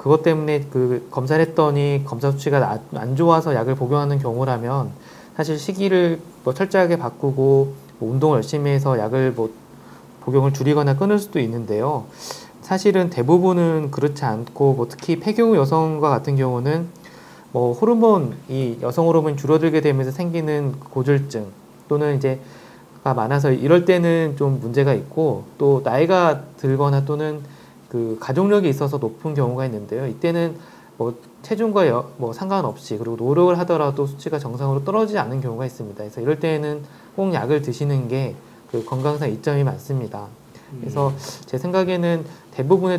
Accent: native